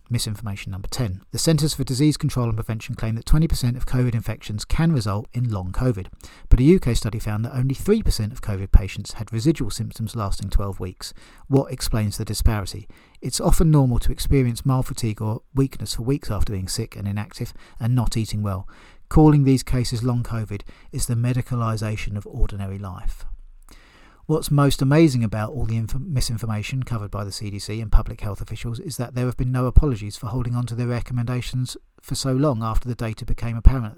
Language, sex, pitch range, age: English, male, 105-125 Hz, 40-59